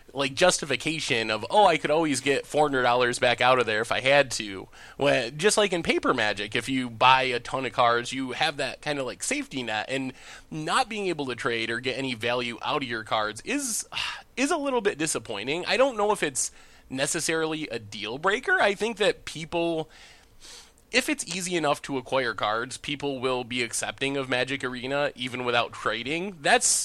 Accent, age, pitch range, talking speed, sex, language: American, 20-39, 125-170 Hz, 200 wpm, male, English